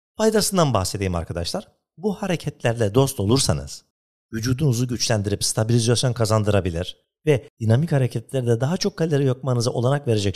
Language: Turkish